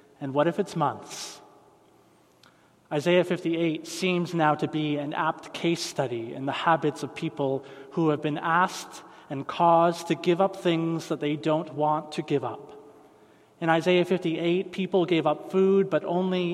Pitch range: 145-175 Hz